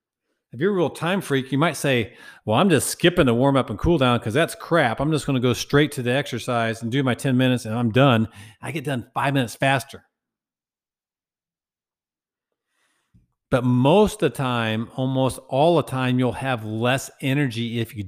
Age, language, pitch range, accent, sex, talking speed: 50-69, English, 120-165 Hz, American, male, 200 wpm